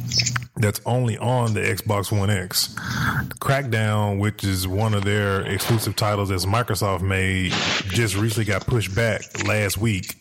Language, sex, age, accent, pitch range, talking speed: English, male, 20-39, American, 100-120 Hz, 145 wpm